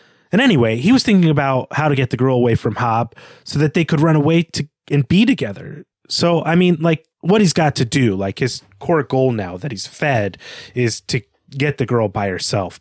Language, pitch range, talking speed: English, 115-160 Hz, 225 wpm